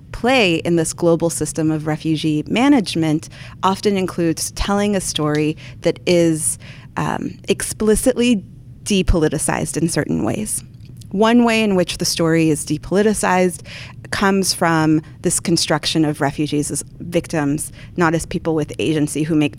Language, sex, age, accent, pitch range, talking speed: English, female, 30-49, American, 150-180 Hz, 135 wpm